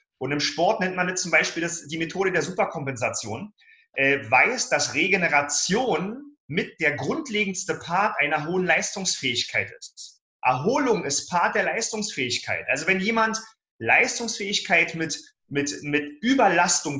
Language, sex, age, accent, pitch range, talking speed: German, male, 30-49, German, 165-225 Hz, 135 wpm